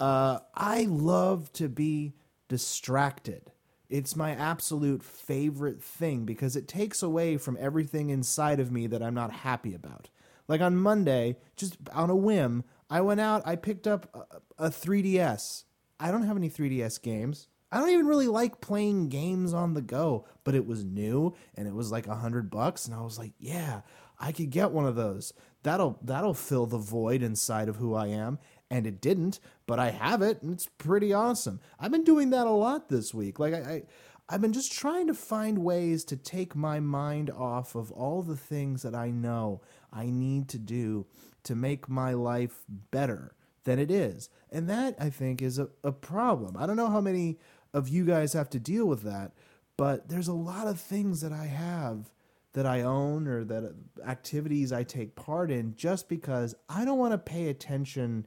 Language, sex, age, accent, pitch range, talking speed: English, male, 30-49, American, 125-175 Hz, 195 wpm